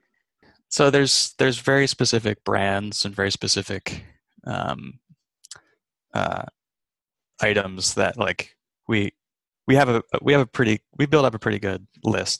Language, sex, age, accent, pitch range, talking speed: English, male, 20-39, American, 95-115 Hz, 140 wpm